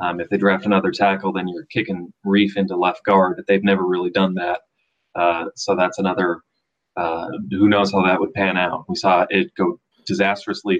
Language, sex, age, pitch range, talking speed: English, male, 30-49, 95-105 Hz, 200 wpm